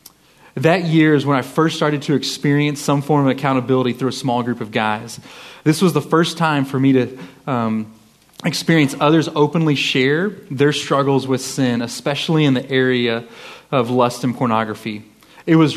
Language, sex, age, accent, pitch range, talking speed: English, male, 30-49, American, 120-150 Hz, 175 wpm